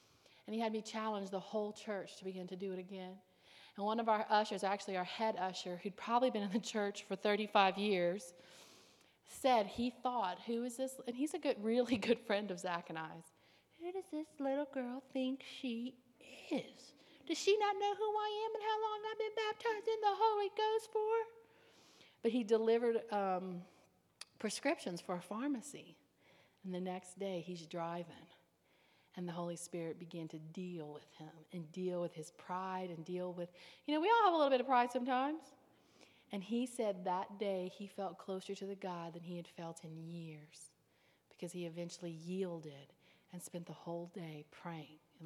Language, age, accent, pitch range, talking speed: English, 40-59, American, 180-245 Hz, 190 wpm